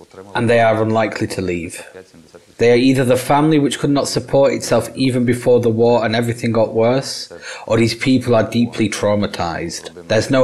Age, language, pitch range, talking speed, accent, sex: 30-49, Ukrainian, 110-135 Hz, 185 wpm, British, male